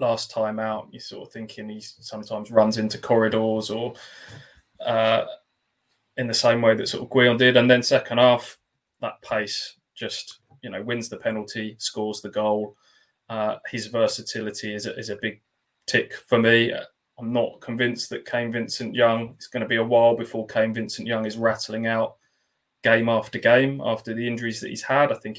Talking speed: 180 wpm